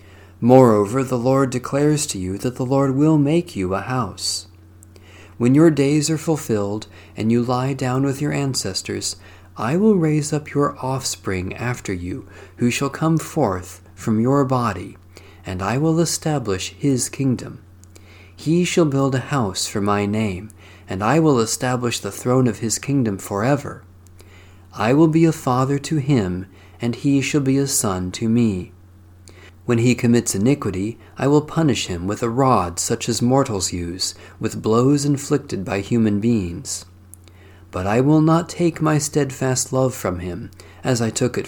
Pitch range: 95-135 Hz